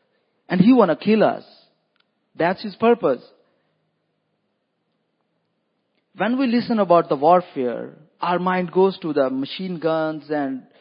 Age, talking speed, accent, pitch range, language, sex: 50-69, 130 wpm, Indian, 160-220 Hz, English, male